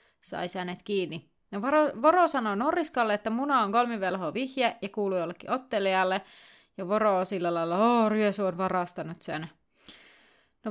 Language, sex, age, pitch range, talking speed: Finnish, female, 30-49, 190-235 Hz, 150 wpm